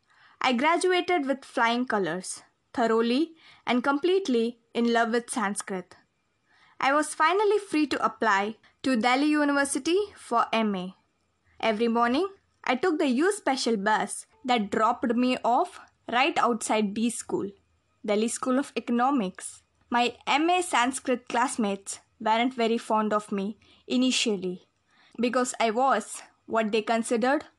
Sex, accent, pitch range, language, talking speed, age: female, Indian, 220-280 Hz, English, 130 wpm, 20-39